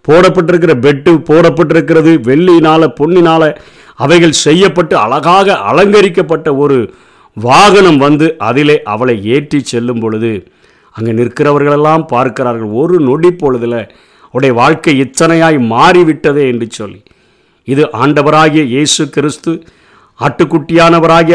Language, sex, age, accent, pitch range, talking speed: Tamil, male, 50-69, native, 125-165 Hz, 95 wpm